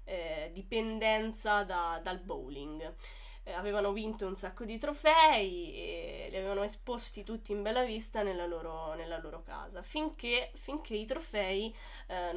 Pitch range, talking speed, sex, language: 185-230 Hz, 135 wpm, female, Italian